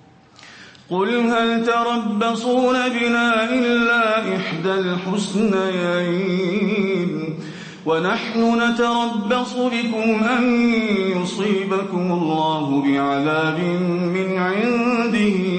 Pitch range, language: 170-220 Hz, English